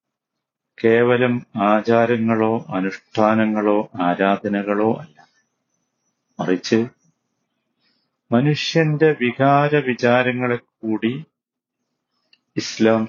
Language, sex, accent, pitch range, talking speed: Malayalam, male, native, 110-150 Hz, 50 wpm